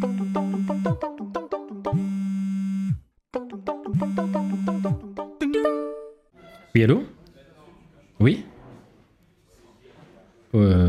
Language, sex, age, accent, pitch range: French, male, 30-49, French, 110-160 Hz